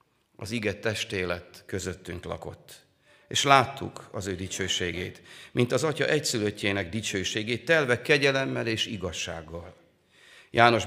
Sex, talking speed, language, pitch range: male, 110 wpm, Hungarian, 95-120 Hz